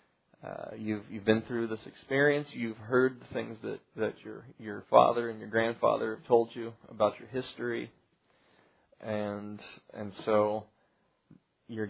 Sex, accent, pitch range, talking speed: male, American, 110-125 Hz, 145 wpm